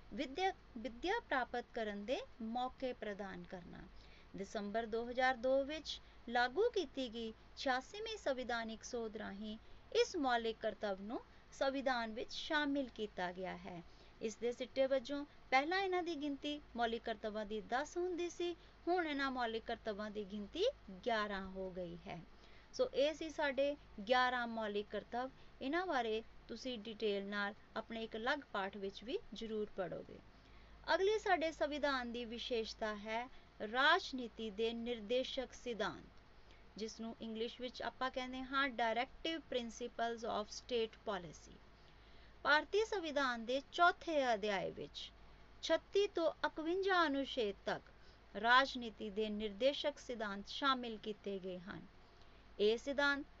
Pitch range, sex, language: 220-285 Hz, female, Punjabi